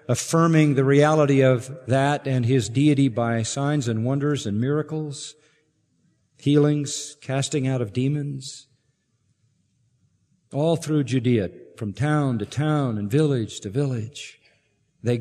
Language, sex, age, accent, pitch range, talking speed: English, male, 50-69, American, 120-160 Hz, 120 wpm